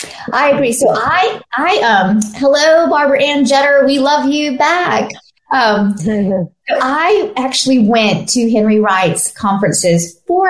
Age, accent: 40-59, American